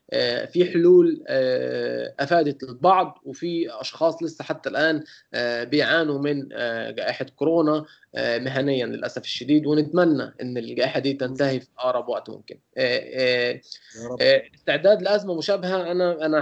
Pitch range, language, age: 130-170 Hz, Arabic, 20-39